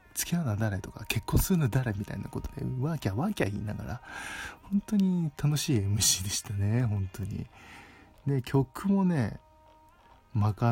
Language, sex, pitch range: Japanese, male, 95-125 Hz